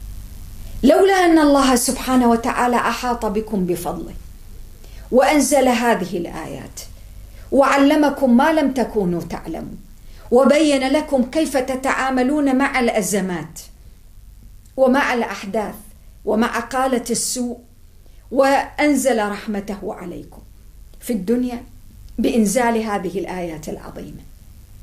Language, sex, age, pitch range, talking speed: English, female, 50-69, 175-260 Hz, 85 wpm